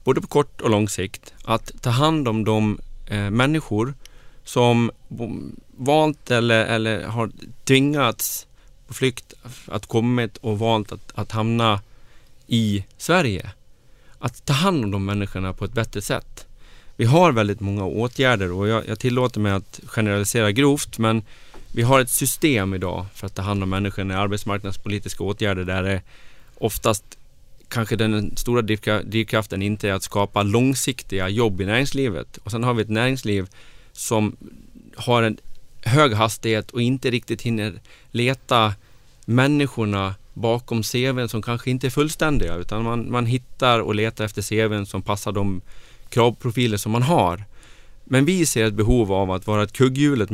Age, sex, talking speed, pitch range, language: 30-49, male, 155 wpm, 105-125 Hz, English